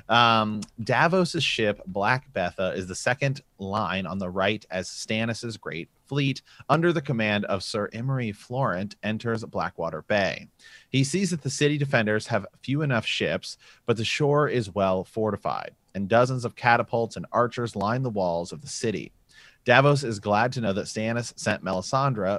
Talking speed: 170 wpm